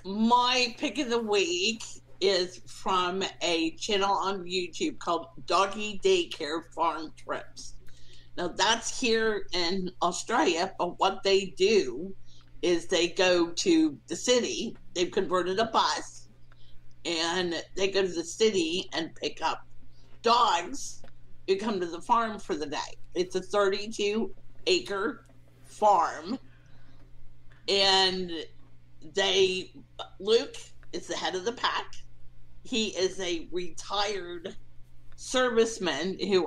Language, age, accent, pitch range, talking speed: English, 50-69, American, 130-200 Hz, 120 wpm